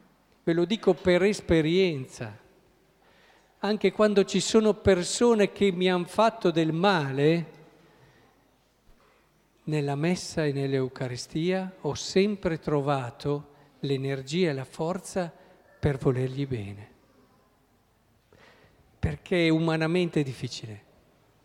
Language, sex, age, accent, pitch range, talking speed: Italian, male, 50-69, native, 140-185 Hz, 100 wpm